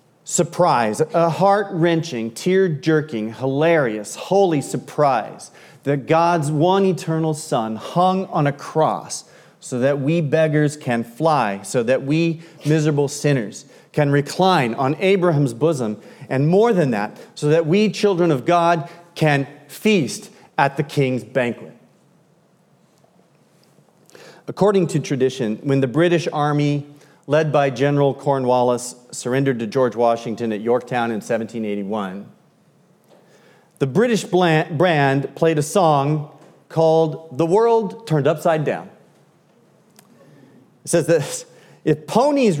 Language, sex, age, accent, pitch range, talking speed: English, male, 40-59, American, 130-175 Hz, 120 wpm